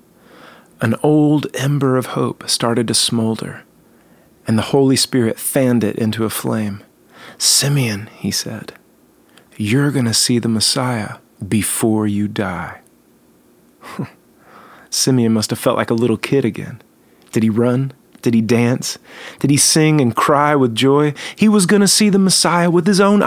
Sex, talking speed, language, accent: male, 155 wpm, English, American